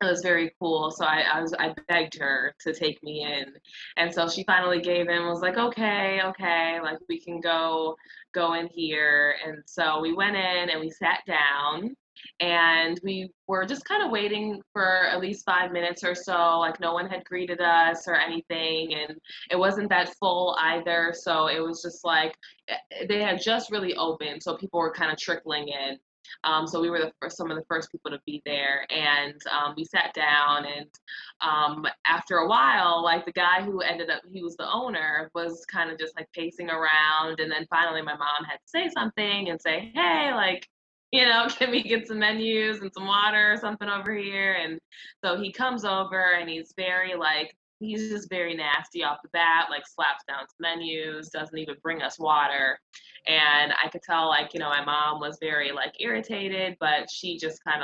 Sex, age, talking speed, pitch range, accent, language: female, 20-39, 205 wpm, 155-185 Hz, American, English